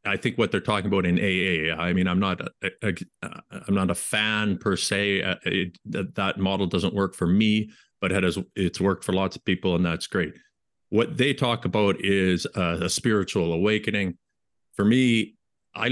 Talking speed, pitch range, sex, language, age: 200 wpm, 90-115 Hz, male, English, 40-59